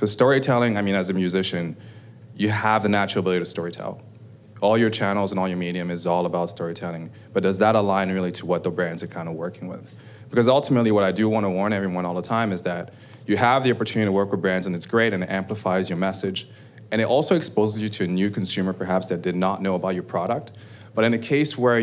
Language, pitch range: English, 95-115 Hz